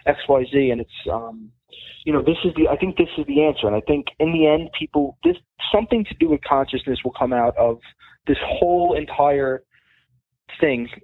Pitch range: 130-160 Hz